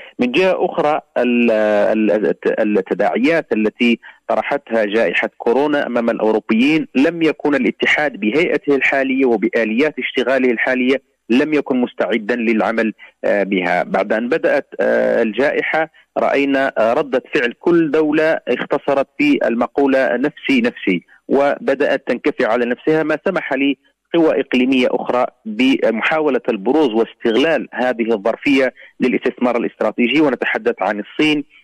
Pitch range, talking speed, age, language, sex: 115-150 Hz, 110 wpm, 40-59, Arabic, male